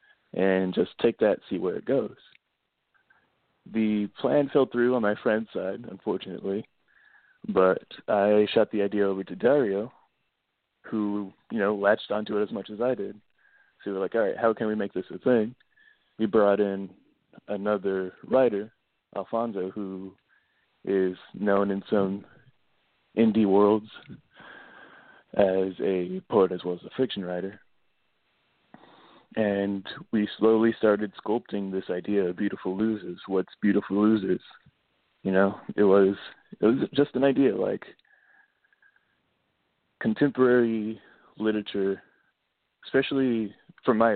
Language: English